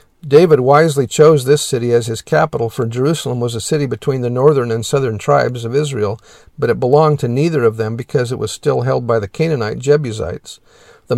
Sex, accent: male, American